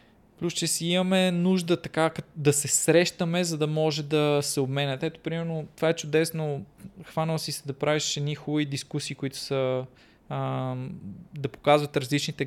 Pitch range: 140-175 Hz